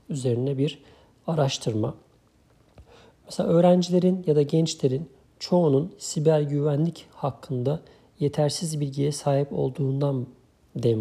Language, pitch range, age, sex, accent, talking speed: Turkish, 130-150 Hz, 50-69, male, native, 95 wpm